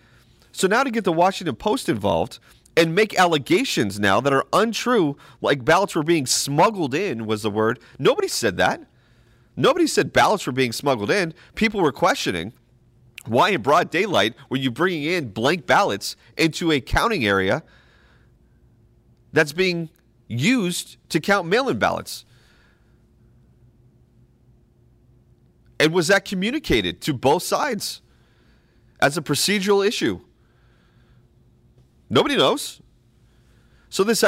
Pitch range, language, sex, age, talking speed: 115-180 Hz, English, male, 40-59, 130 wpm